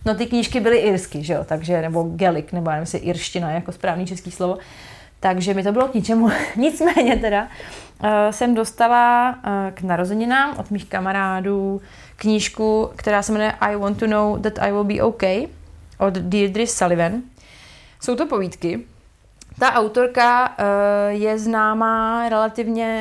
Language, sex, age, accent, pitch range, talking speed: Czech, female, 30-49, native, 195-235 Hz, 160 wpm